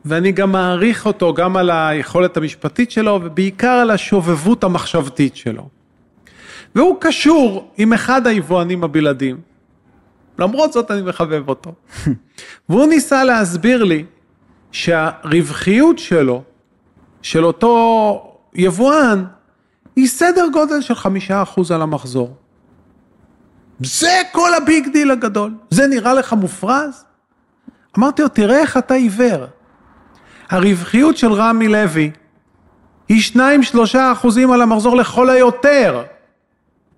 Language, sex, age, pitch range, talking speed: Hebrew, male, 40-59, 185-285 Hz, 110 wpm